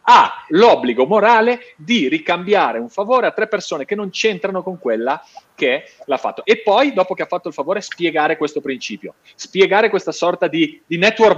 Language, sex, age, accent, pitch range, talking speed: Italian, male, 40-59, native, 150-205 Hz, 185 wpm